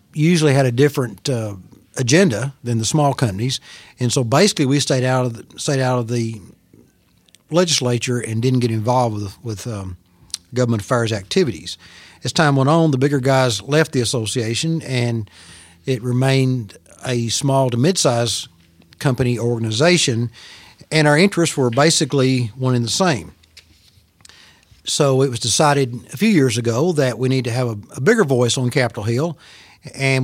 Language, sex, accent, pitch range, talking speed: English, male, American, 115-145 Hz, 165 wpm